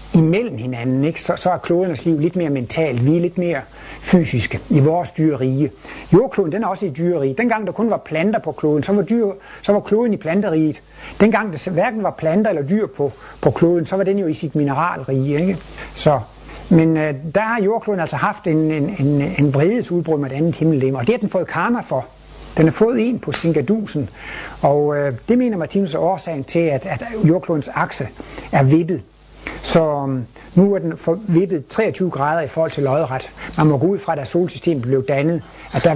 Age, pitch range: 60-79, 140-185 Hz